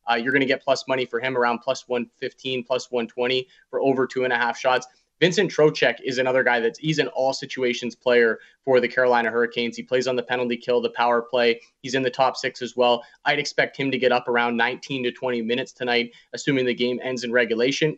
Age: 20-39